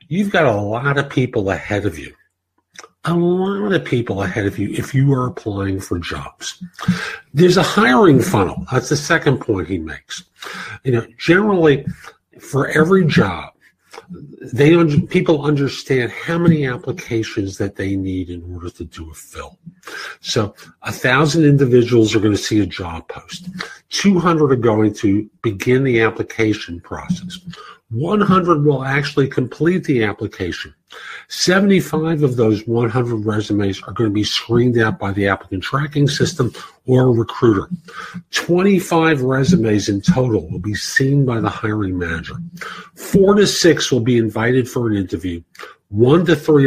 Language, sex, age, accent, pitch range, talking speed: English, male, 50-69, American, 105-160 Hz, 155 wpm